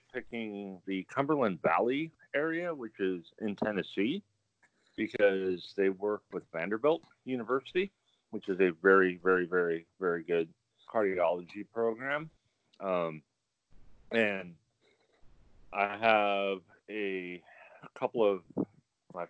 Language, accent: English, American